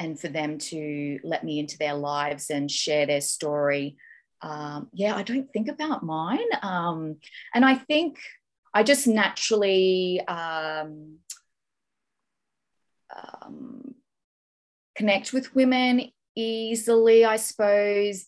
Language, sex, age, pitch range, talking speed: English, female, 30-49, 155-215 Hz, 115 wpm